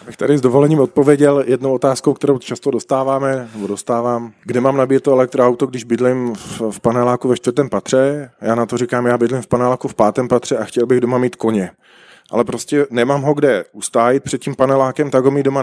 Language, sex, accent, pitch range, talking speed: Czech, male, native, 115-135 Hz, 205 wpm